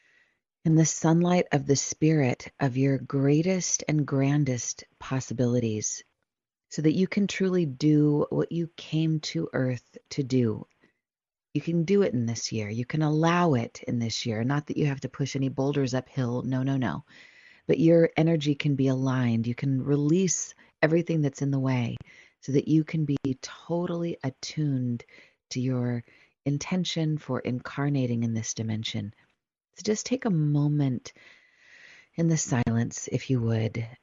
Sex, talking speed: female, 160 wpm